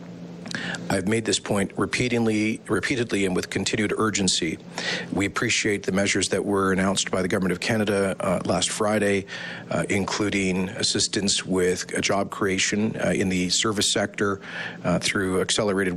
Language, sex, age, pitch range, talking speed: English, male, 40-59, 90-105 Hz, 145 wpm